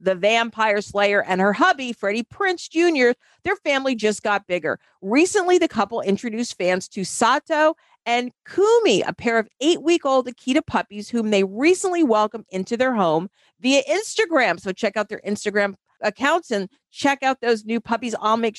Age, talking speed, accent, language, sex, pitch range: 50-69, 170 wpm, American, English, female, 205-285 Hz